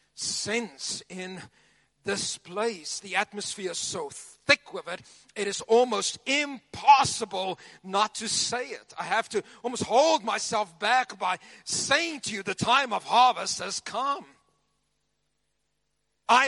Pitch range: 170-220 Hz